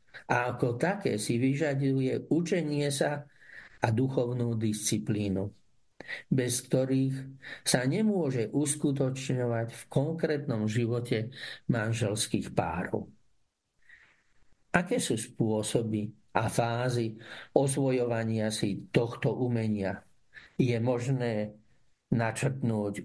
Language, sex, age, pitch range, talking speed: Slovak, male, 50-69, 115-145 Hz, 85 wpm